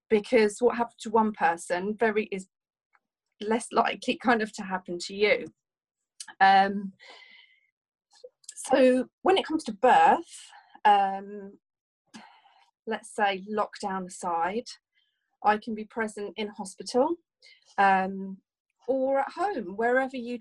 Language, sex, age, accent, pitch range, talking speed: English, female, 30-49, British, 195-255 Hz, 120 wpm